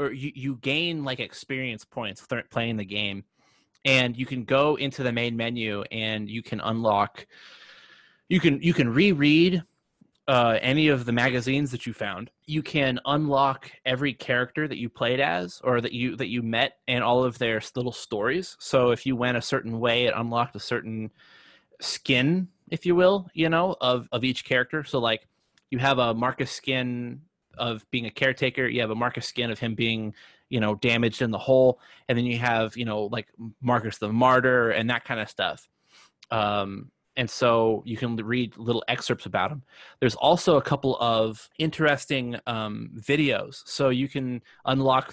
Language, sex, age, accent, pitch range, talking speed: English, male, 20-39, American, 115-135 Hz, 185 wpm